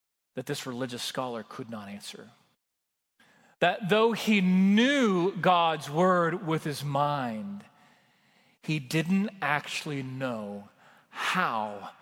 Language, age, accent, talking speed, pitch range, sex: English, 40-59, American, 105 wpm, 130-180 Hz, male